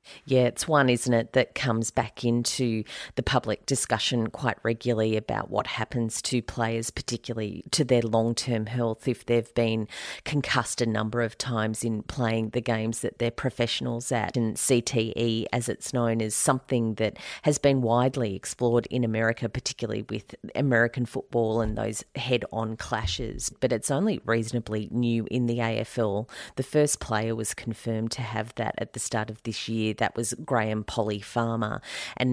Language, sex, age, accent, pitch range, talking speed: English, female, 40-59, Australian, 110-125 Hz, 165 wpm